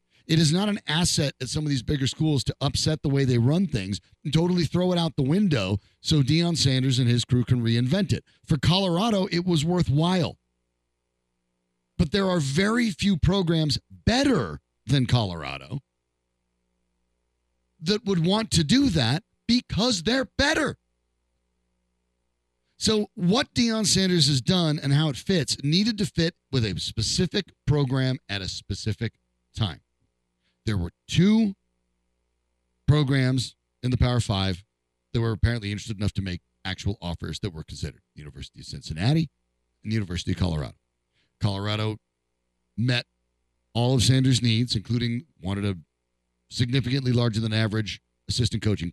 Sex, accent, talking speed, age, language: male, American, 150 wpm, 40-59, English